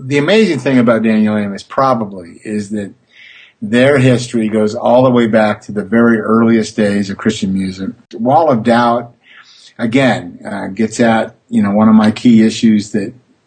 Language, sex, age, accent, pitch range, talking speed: English, male, 50-69, American, 110-130 Hz, 175 wpm